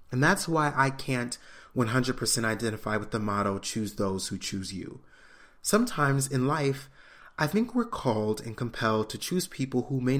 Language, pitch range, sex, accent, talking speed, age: English, 110-140 Hz, male, American, 170 wpm, 30-49